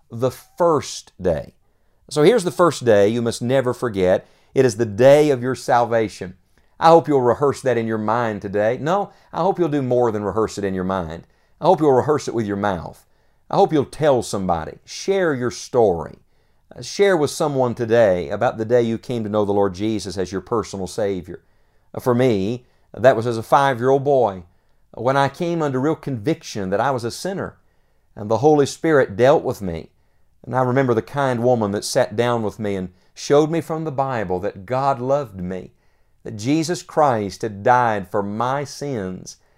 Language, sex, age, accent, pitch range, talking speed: English, male, 50-69, American, 105-140 Hz, 195 wpm